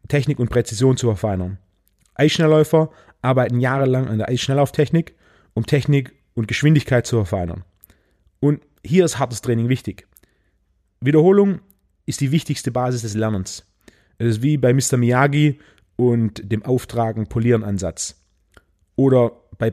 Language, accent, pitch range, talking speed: German, German, 110-145 Hz, 125 wpm